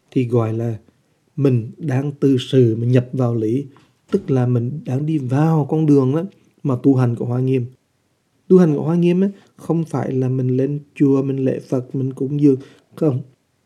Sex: male